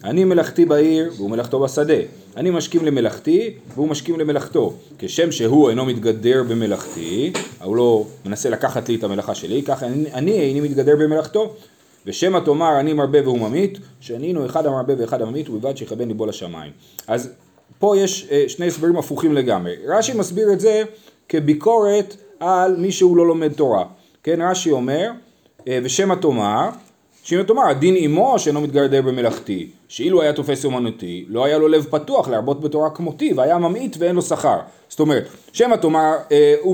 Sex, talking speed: male, 160 wpm